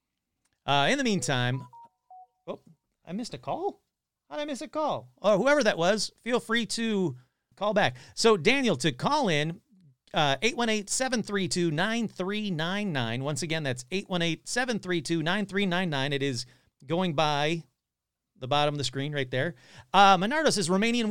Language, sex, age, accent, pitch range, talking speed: English, male, 40-59, American, 125-185 Hz, 140 wpm